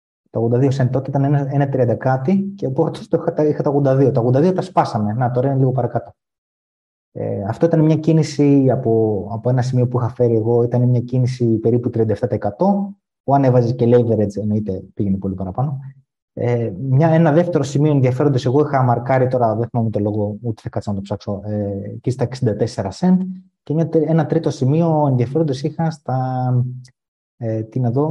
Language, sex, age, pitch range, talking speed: Greek, male, 20-39, 115-145 Hz, 160 wpm